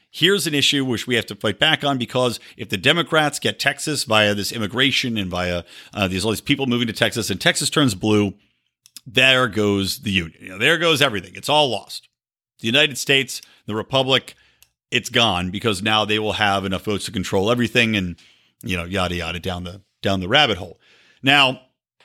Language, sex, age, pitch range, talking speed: English, male, 50-69, 100-135 Hz, 200 wpm